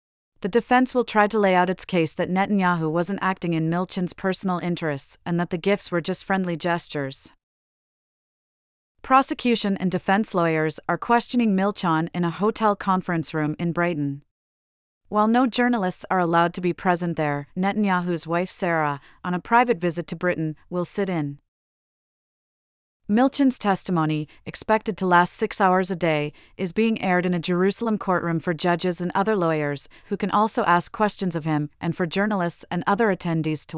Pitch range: 165-200 Hz